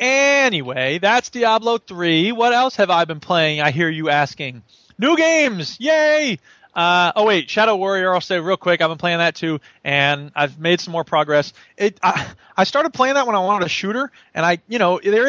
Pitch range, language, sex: 155-205 Hz, English, male